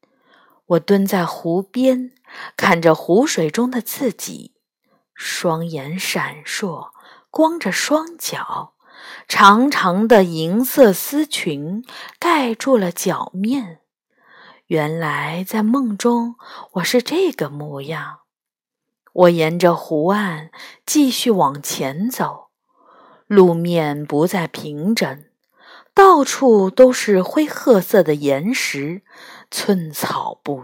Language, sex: Chinese, female